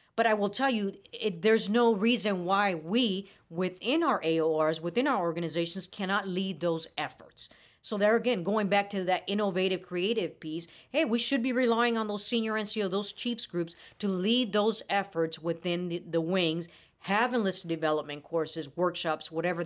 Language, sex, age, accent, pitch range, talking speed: English, female, 40-59, American, 165-210 Hz, 175 wpm